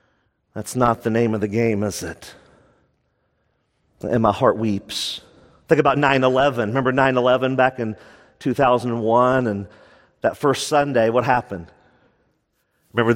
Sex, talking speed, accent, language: male, 135 wpm, American, English